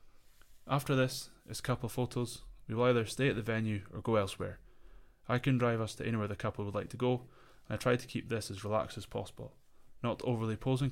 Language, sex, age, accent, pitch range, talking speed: English, male, 20-39, British, 105-125 Hz, 225 wpm